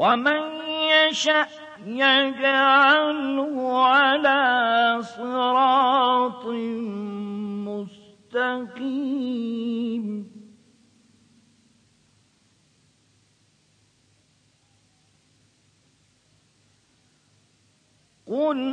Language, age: Persian, 50-69